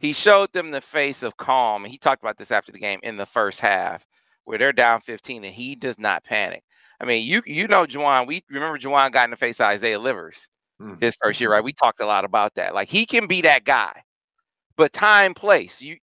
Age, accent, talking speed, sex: 40-59, American, 235 wpm, male